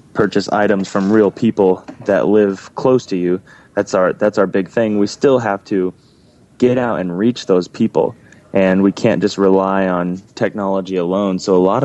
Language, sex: English, male